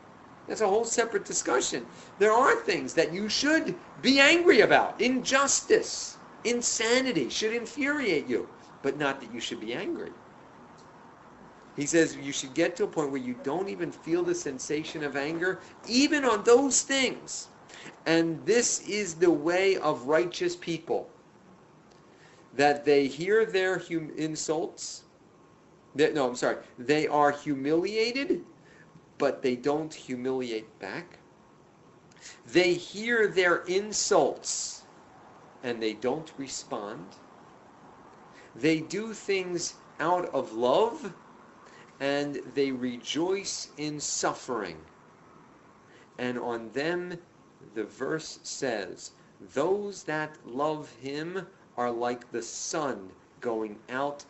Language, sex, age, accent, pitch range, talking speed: English, male, 40-59, American, 140-220 Hz, 115 wpm